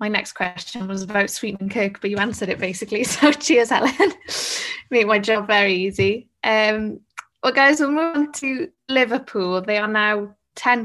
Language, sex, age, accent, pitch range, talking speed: English, female, 20-39, British, 200-235 Hz, 175 wpm